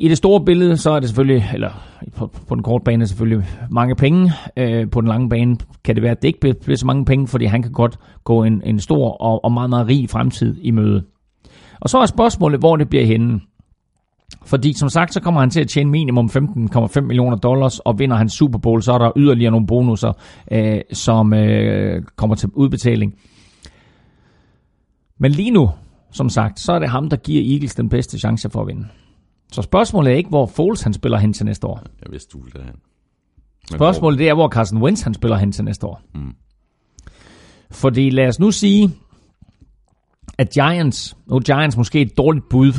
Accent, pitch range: native, 110-140 Hz